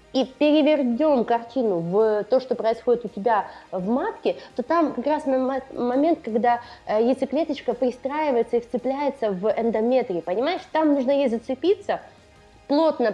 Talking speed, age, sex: 130 wpm, 20-39, female